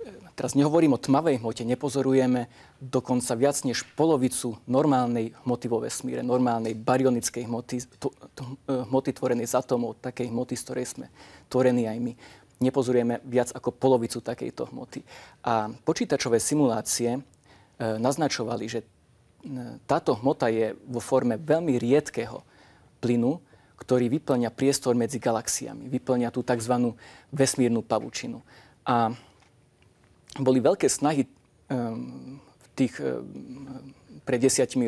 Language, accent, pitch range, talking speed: Czech, Slovak, 120-130 Hz, 115 wpm